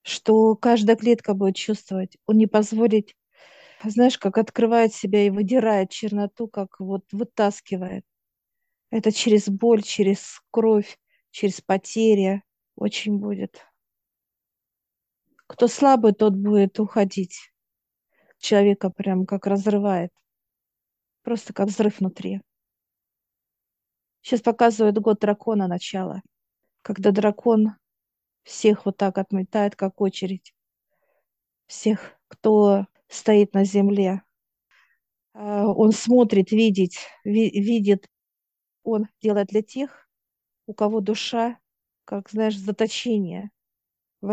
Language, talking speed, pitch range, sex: Russian, 100 wpm, 195-220 Hz, female